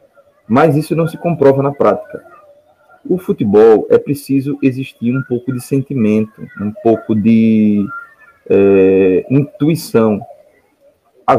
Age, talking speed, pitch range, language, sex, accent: 20-39, 110 wpm, 110-185 Hz, Portuguese, male, Brazilian